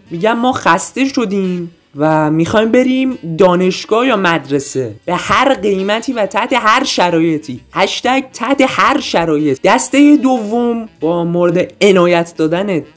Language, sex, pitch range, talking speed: Persian, male, 170-240 Hz, 125 wpm